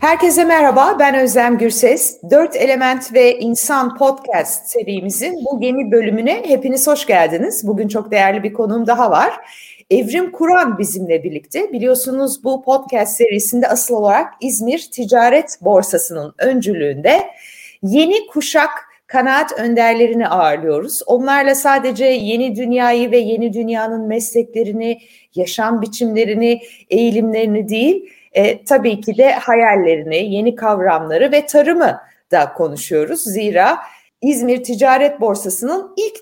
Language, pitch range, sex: Turkish, 215-280 Hz, female